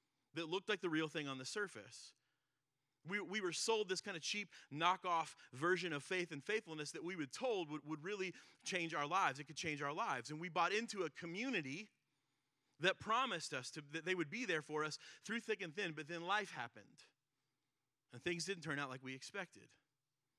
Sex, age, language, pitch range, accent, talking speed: male, 30-49, English, 140-170 Hz, American, 210 wpm